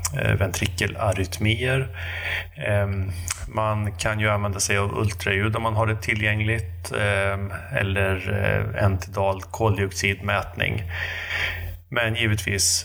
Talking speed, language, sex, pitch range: 85 wpm, Swedish, male, 90-110 Hz